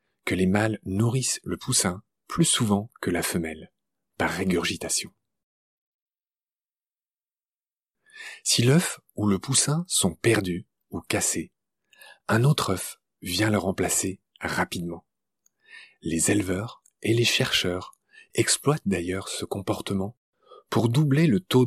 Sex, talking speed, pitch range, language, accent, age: male, 115 wpm, 95-120 Hz, French, French, 40-59